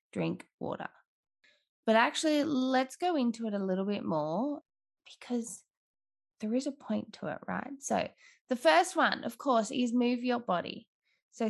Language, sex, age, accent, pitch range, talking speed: English, female, 20-39, Australian, 195-250 Hz, 160 wpm